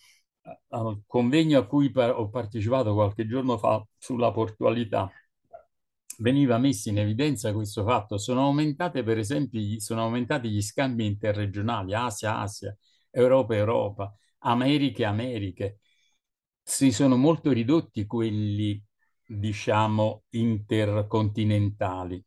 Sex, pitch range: male, 105-125 Hz